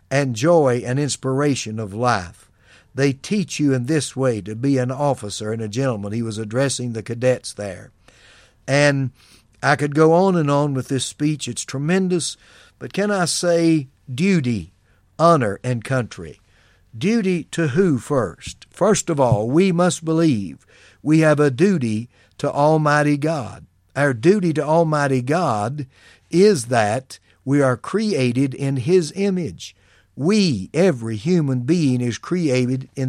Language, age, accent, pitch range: English, 60-79, American, 115-155 Hz